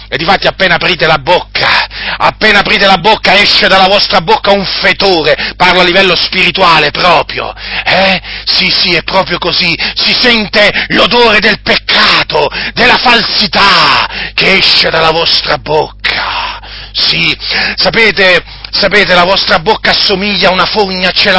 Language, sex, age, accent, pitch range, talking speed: Italian, male, 40-59, native, 170-215 Hz, 145 wpm